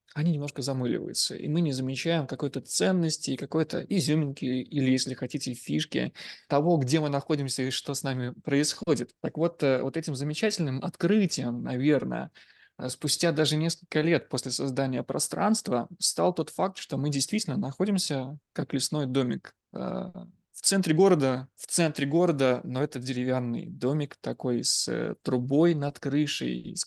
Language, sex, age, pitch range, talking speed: Russian, male, 20-39, 130-165 Hz, 145 wpm